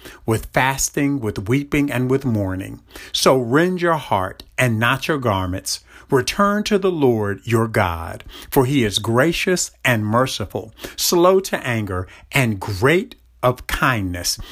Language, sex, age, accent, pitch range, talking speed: English, male, 50-69, American, 105-150 Hz, 140 wpm